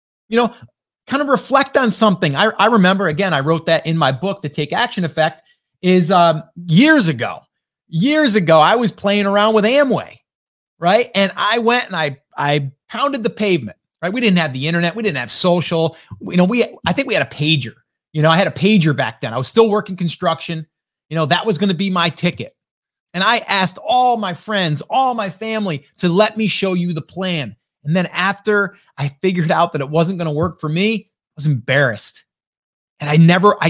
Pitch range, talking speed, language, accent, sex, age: 155-205 Hz, 215 wpm, English, American, male, 30-49